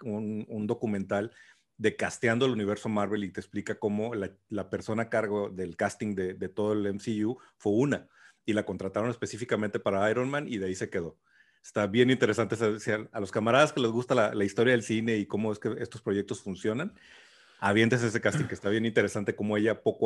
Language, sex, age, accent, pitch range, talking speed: Spanish, male, 40-59, Mexican, 100-120 Hz, 210 wpm